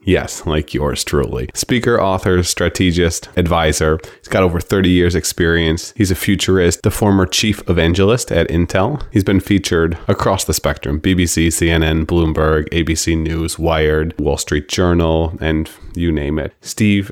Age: 30-49